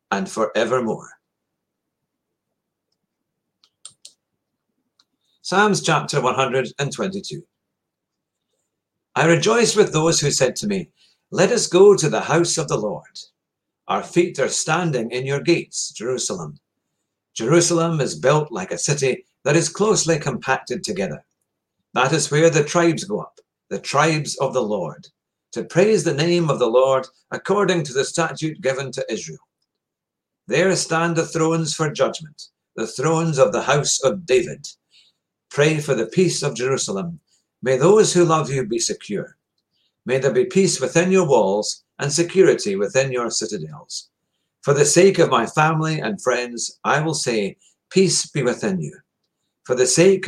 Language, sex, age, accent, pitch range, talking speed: English, male, 50-69, British, 135-175 Hz, 145 wpm